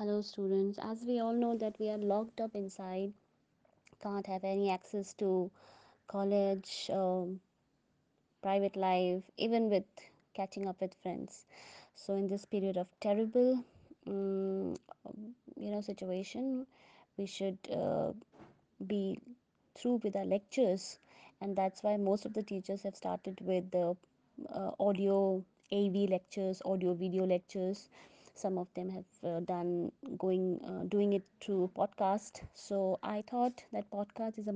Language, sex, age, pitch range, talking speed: English, female, 20-39, 190-210 Hz, 140 wpm